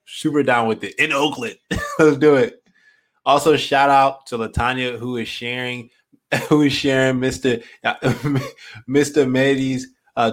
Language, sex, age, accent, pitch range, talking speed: English, male, 20-39, American, 115-135 Hz, 140 wpm